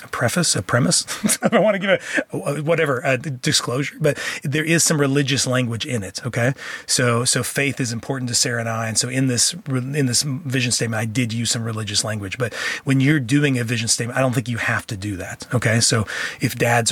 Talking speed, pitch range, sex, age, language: 225 wpm, 115-145 Hz, male, 30-49, English